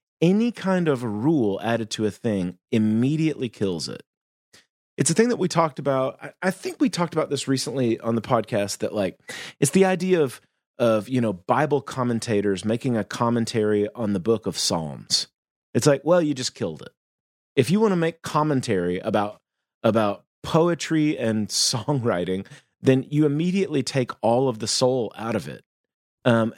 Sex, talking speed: male, 175 wpm